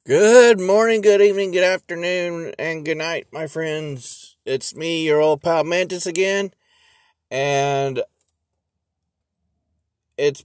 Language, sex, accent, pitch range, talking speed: English, male, American, 95-140 Hz, 115 wpm